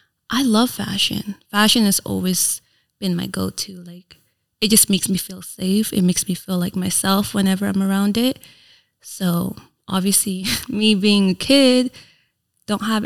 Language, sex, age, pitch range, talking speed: English, female, 20-39, 180-210 Hz, 155 wpm